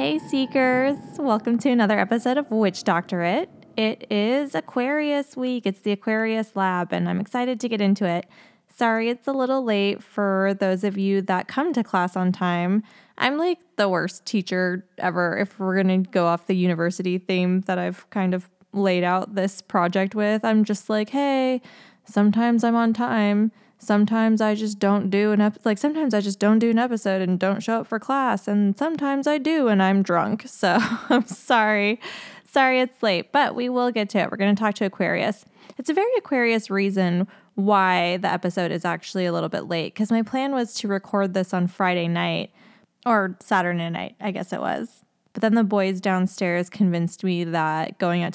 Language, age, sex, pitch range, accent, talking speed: English, 20-39, female, 185-230 Hz, American, 195 wpm